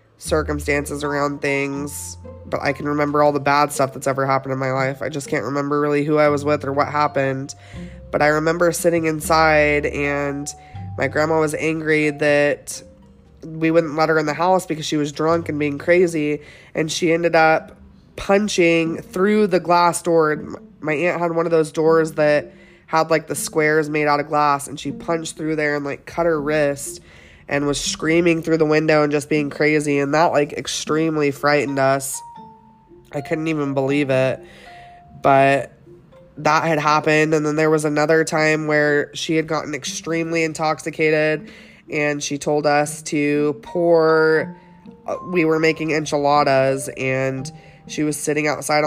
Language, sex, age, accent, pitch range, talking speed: English, female, 20-39, American, 145-160 Hz, 175 wpm